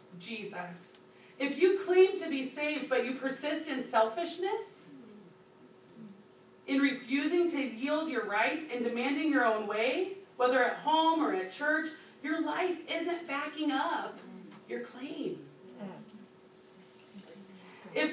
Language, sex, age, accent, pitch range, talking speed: English, female, 30-49, American, 220-310 Hz, 120 wpm